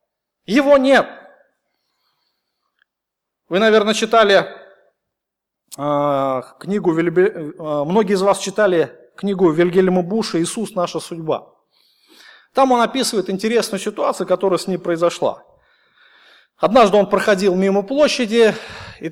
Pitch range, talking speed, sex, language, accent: 180-245 Hz, 105 wpm, male, Russian, native